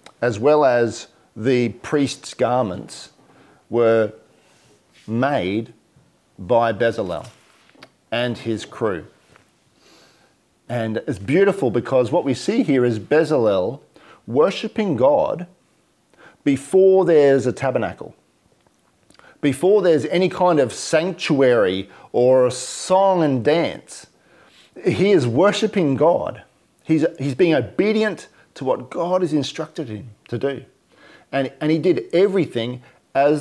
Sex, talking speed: male, 110 wpm